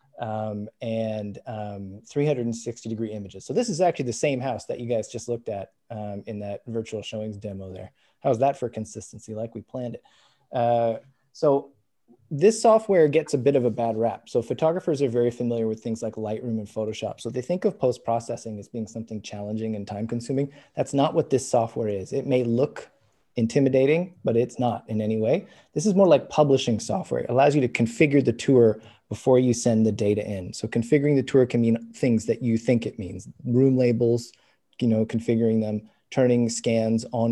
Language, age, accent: English, 20-39, American